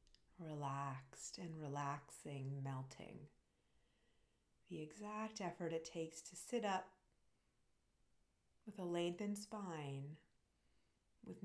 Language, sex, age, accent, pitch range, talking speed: English, female, 40-59, American, 150-175 Hz, 90 wpm